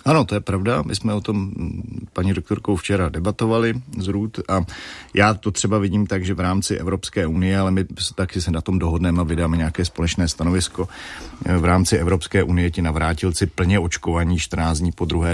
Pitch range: 85-100 Hz